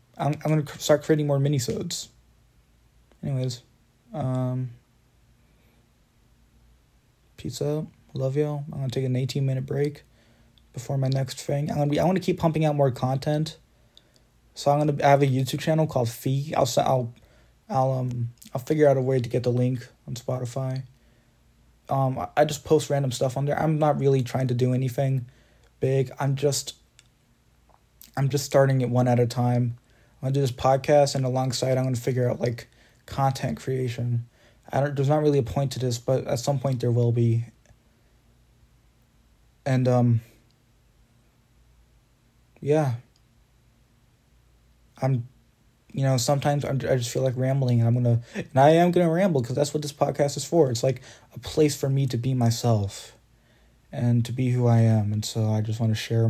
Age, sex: 20-39, male